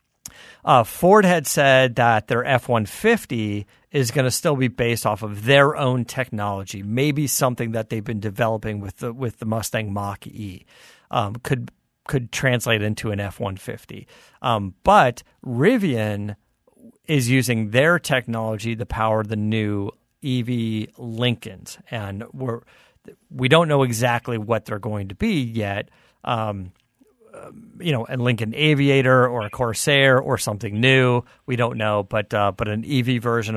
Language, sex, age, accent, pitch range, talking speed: English, male, 40-59, American, 110-135 Hz, 145 wpm